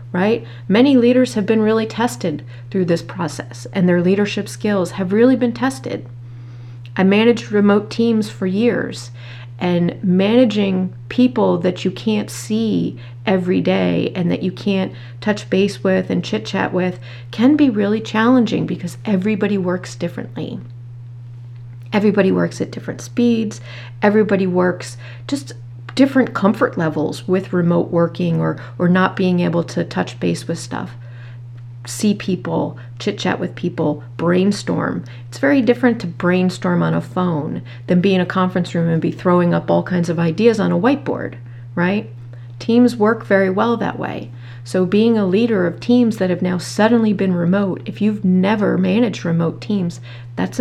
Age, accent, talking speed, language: 40-59, American, 160 wpm, English